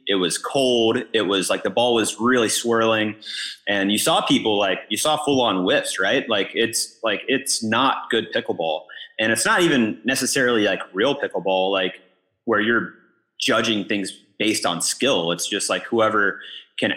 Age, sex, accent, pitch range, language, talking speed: 30-49, male, American, 95-115 Hz, English, 175 wpm